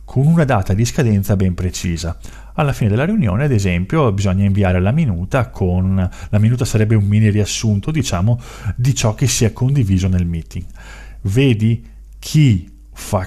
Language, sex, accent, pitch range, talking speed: Italian, male, native, 95-130 Hz, 165 wpm